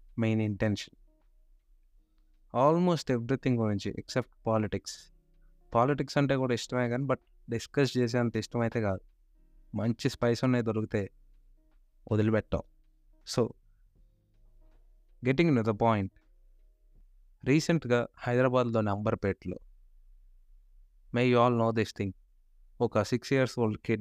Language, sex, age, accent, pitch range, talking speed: Telugu, male, 20-39, native, 95-125 Hz, 180 wpm